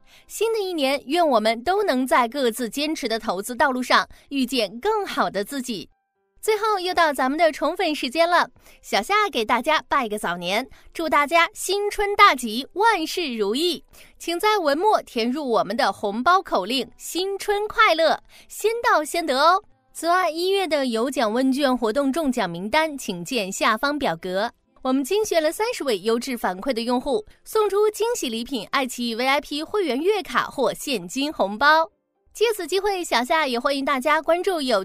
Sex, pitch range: female, 240-355 Hz